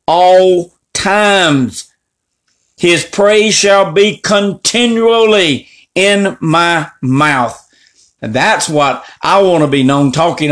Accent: American